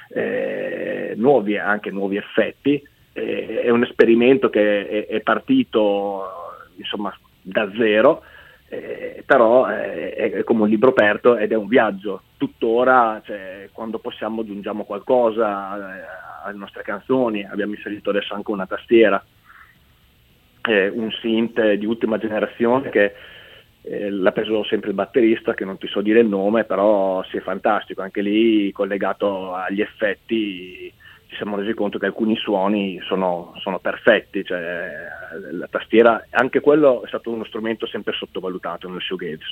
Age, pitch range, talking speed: 30-49, 100-140 Hz, 140 wpm